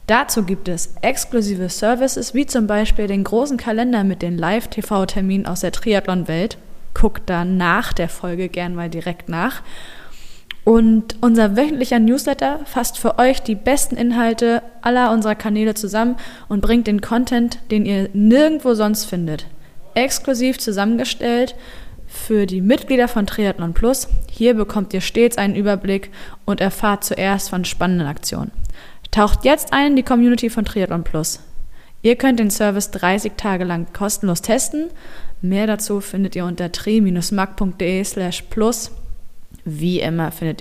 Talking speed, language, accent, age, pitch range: 145 wpm, German, German, 20-39, 175-235 Hz